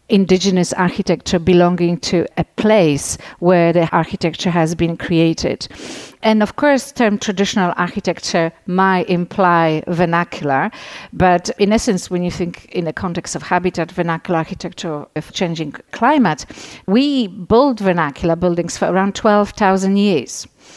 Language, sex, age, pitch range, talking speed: English, female, 50-69, 165-195 Hz, 135 wpm